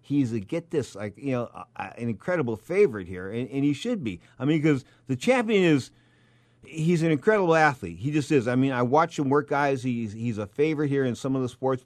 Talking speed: 230 wpm